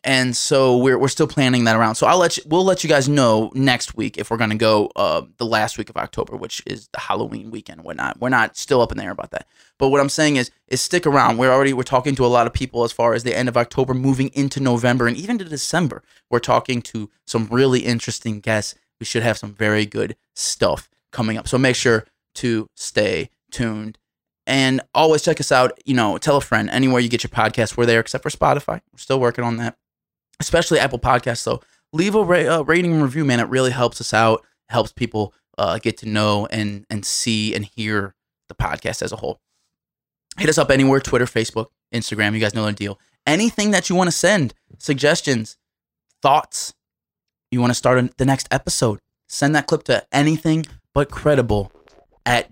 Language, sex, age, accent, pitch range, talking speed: English, male, 20-39, American, 110-140 Hz, 215 wpm